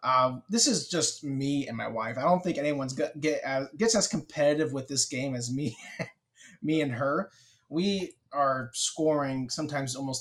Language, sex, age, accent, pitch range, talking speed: English, male, 20-39, American, 130-155 Hz, 180 wpm